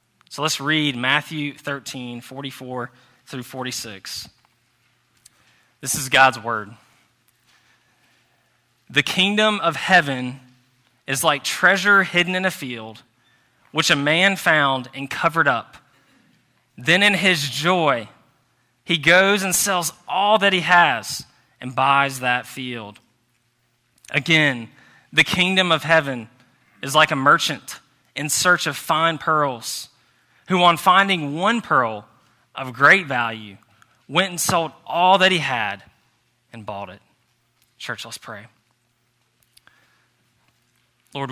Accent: American